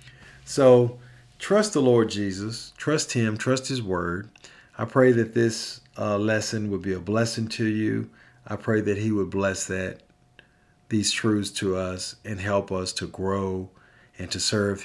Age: 50-69